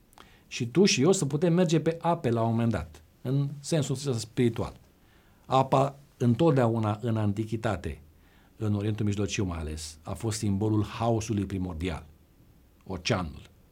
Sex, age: male, 50-69